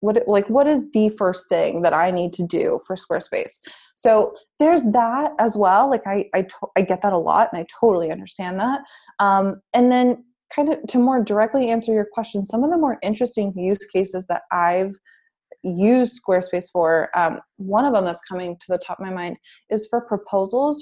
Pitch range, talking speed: 185-225 Hz, 200 wpm